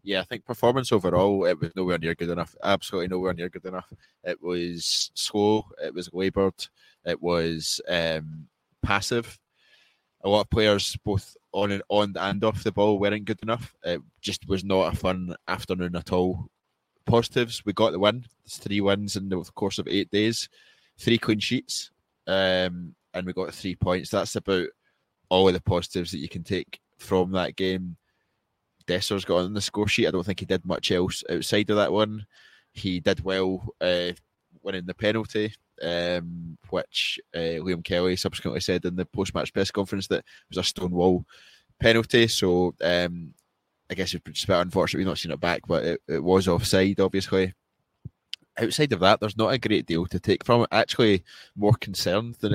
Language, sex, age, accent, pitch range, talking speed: English, male, 20-39, British, 90-105 Hz, 185 wpm